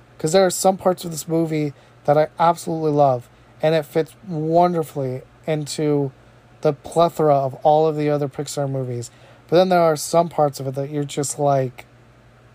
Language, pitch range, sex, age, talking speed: English, 120-165 Hz, male, 30-49, 180 wpm